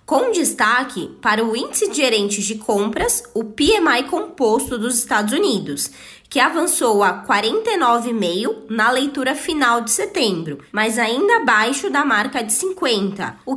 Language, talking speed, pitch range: Portuguese, 140 wpm, 215-295 Hz